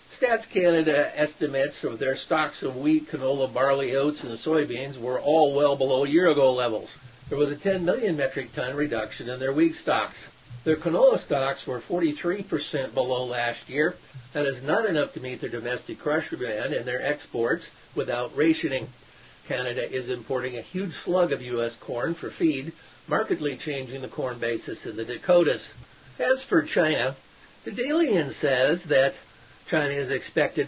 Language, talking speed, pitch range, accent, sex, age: English, 160 wpm, 130-175 Hz, American, male, 50-69